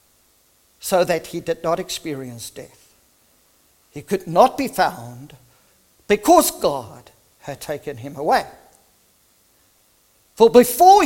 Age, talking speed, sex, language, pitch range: 50-69, 110 wpm, male, English, 150-235 Hz